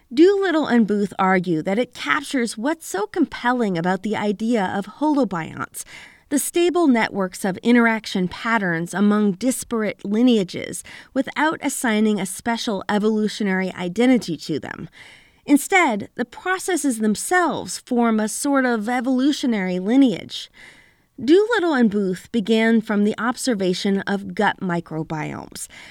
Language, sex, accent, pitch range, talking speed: English, female, American, 200-280 Hz, 120 wpm